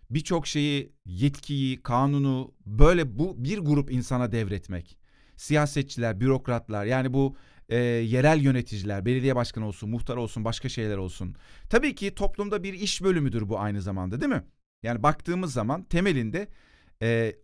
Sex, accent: male, native